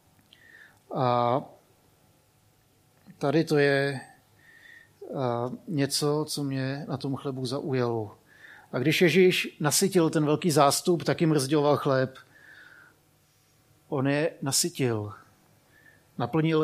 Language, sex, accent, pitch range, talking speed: Czech, male, native, 140-165 Hz, 95 wpm